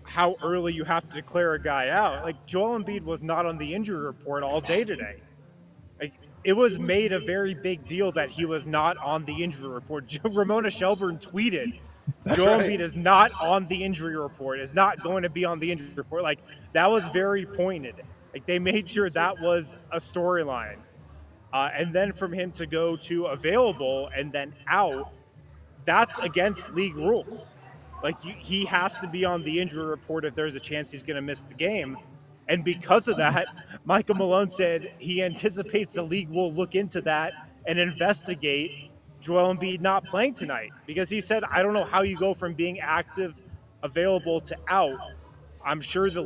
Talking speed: 185 wpm